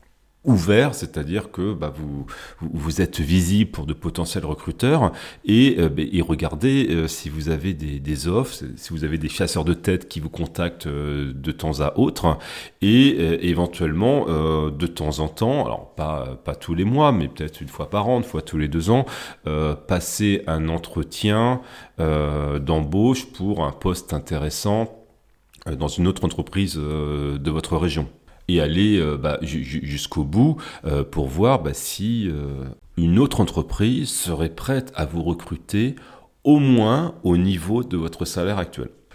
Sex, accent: male, French